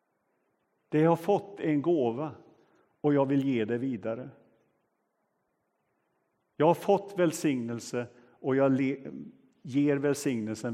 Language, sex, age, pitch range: Swedish, male, 50-69, 120-170 Hz